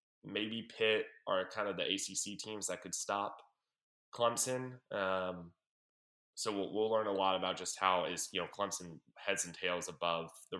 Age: 10-29